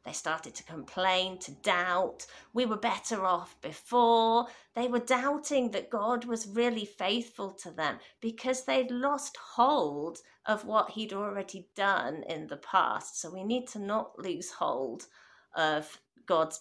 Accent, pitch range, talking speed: British, 195-260 Hz, 150 wpm